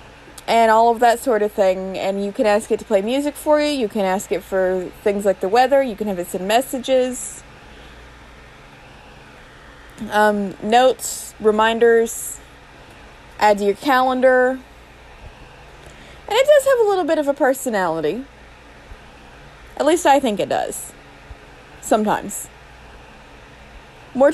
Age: 20-39